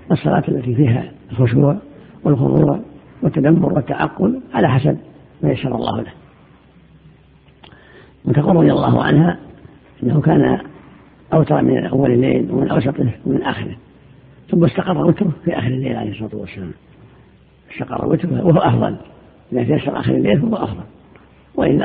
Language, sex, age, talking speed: Arabic, female, 50-69, 130 wpm